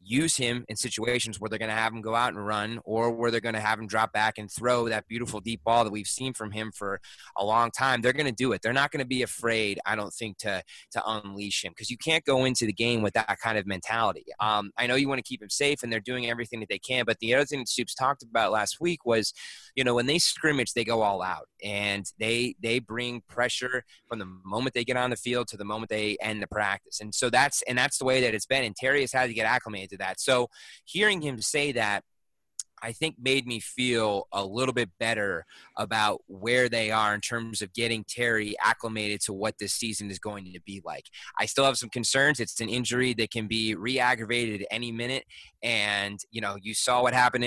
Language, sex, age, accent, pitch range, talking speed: English, male, 30-49, American, 105-125 Hz, 250 wpm